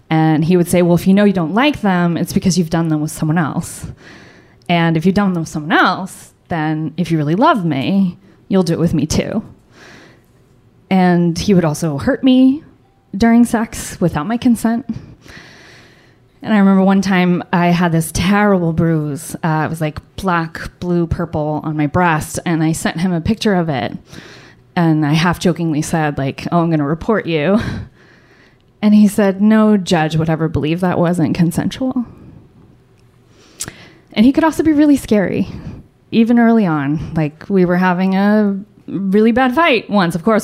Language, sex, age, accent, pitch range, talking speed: English, female, 20-39, American, 165-210 Hz, 185 wpm